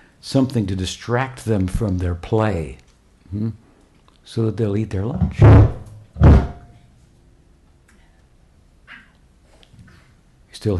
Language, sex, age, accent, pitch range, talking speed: English, male, 60-79, American, 90-105 Hz, 85 wpm